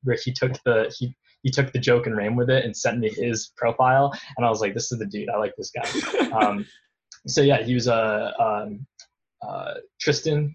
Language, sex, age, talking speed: English, male, 20-39, 220 wpm